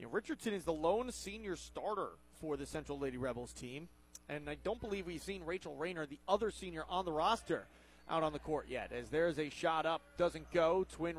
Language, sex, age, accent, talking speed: English, male, 30-49, American, 210 wpm